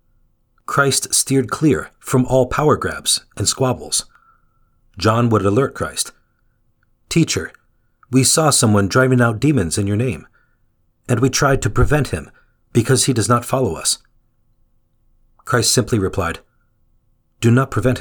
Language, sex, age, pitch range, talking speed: English, male, 40-59, 105-130 Hz, 135 wpm